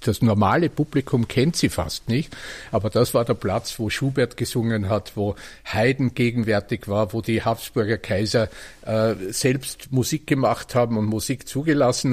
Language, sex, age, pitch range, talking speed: German, male, 50-69, 105-125 Hz, 160 wpm